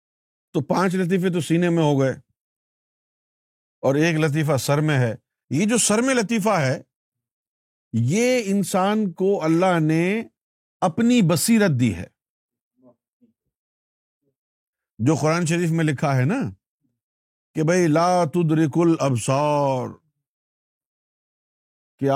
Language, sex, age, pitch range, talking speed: Urdu, male, 50-69, 145-240 Hz, 115 wpm